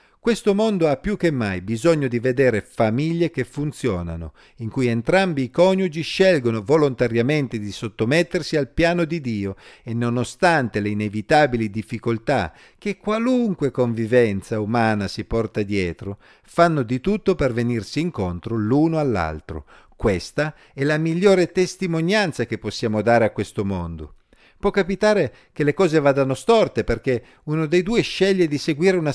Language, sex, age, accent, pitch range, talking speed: Italian, male, 50-69, native, 110-170 Hz, 145 wpm